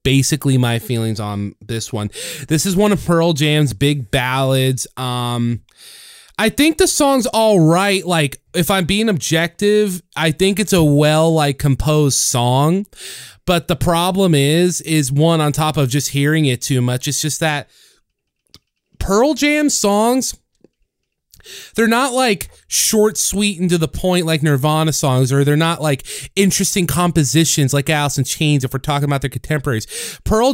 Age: 20-39